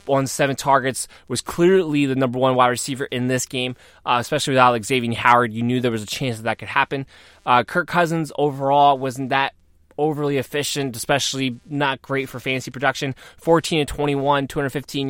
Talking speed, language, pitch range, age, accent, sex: 175 wpm, English, 125-165 Hz, 20-39, American, male